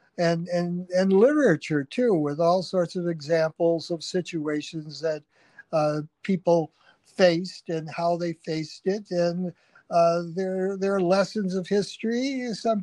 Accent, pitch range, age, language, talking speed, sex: American, 160-190 Hz, 60-79, English, 140 wpm, male